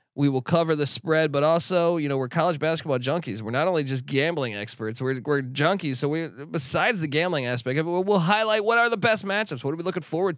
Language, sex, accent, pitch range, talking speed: English, male, American, 125-185 Hz, 245 wpm